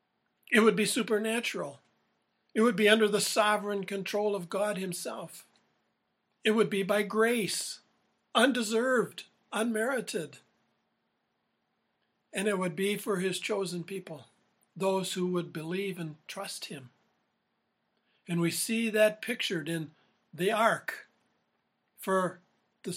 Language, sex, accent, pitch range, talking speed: English, male, American, 170-210 Hz, 120 wpm